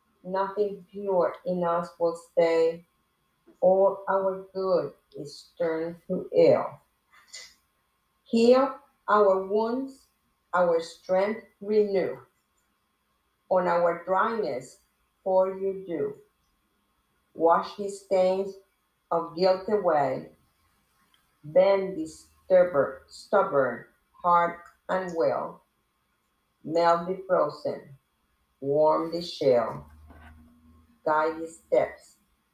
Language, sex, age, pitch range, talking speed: English, female, 50-69, 150-195 Hz, 85 wpm